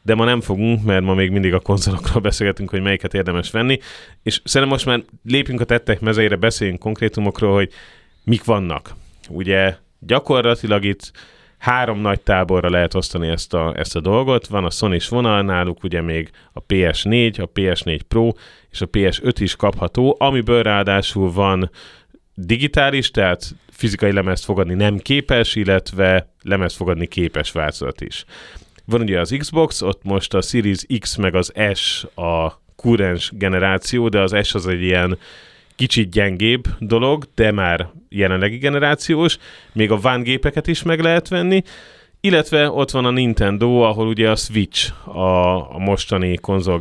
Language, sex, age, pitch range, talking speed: Hungarian, male, 30-49, 95-120 Hz, 160 wpm